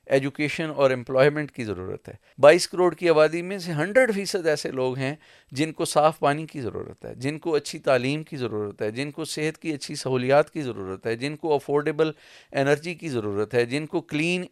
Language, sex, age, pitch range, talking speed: Urdu, male, 40-59, 145-185 Hz, 205 wpm